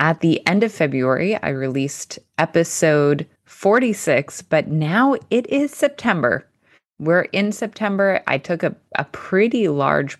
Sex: female